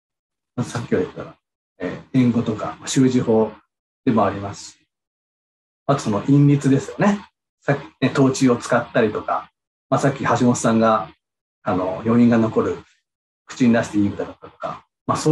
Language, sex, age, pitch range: Japanese, male, 40-59, 115-175 Hz